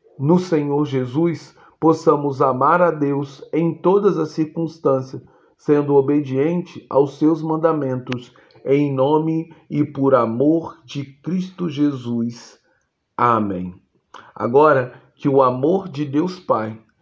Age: 40-59